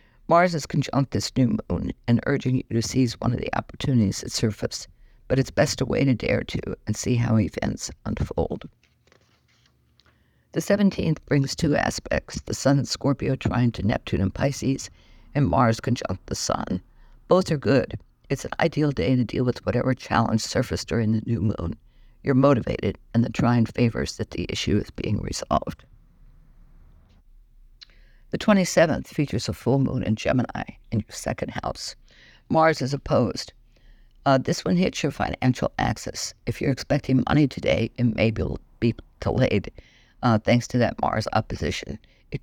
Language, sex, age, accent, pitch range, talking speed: English, female, 60-79, American, 110-135 Hz, 165 wpm